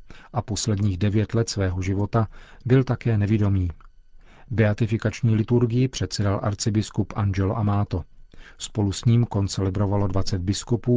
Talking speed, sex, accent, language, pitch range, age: 115 wpm, male, native, Czech, 100-120 Hz, 40-59